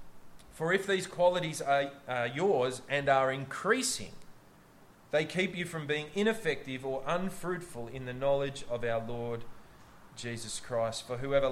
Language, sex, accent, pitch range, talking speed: English, male, Australian, 115-160 Hz, 145 wpm